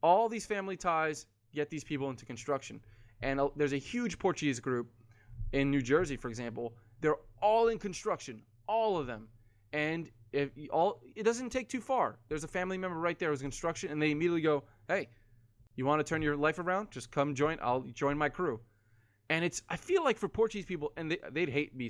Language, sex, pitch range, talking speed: English, male, 115-160 Hz, 210 wpm